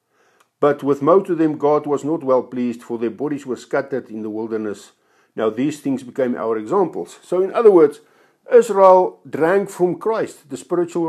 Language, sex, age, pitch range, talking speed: English, male, 50-69, 135-190 Hz, 185 wpm